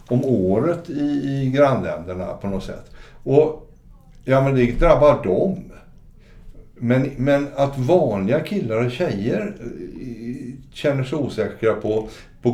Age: 60-79